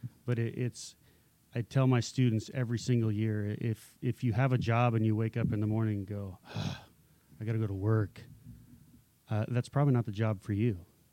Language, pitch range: English, 110-125 Hz